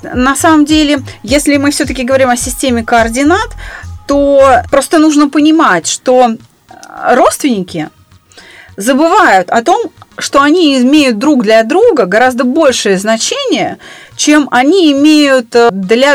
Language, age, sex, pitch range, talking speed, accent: Russian, 30-49, female, 210-285 Hz, 120 wpm, native